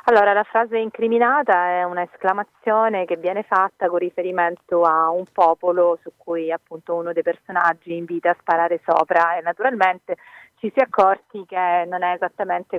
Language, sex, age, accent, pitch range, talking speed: Italian, female, 30-49, native, 170-200 Hz, 160 wpm